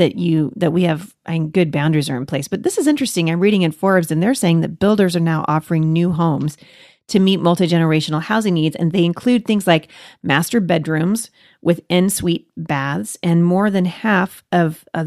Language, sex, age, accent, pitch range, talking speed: English, female, 40-59, American, 160-190 Hz, 205 wpm